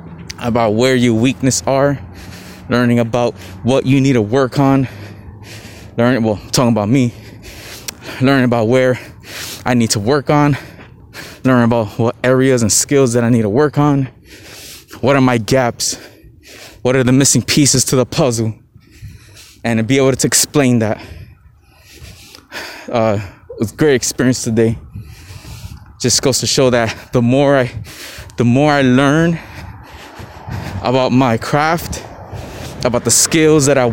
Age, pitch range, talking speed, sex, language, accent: 20-39, 110-135 Hz, 150 wpm, male, English, American